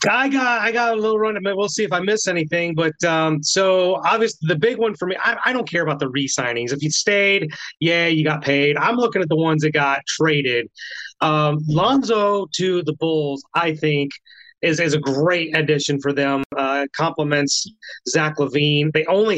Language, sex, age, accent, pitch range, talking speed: English, male, 30-49, American, 145-180 Hz, 200 wpm